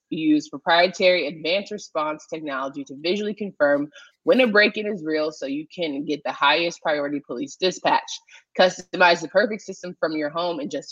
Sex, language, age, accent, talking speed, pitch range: female, English, 20-39, American, 170 wpm, 155-210 Hz